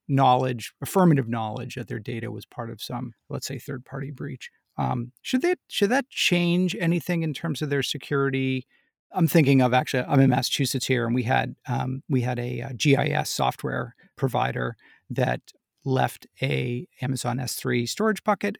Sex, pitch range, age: male, 120-155 Hz, 40-59